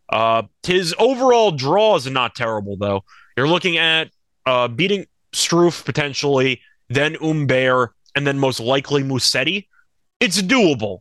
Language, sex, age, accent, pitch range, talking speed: English, male, 30-49, American, 130-175 Hz, 130 wpm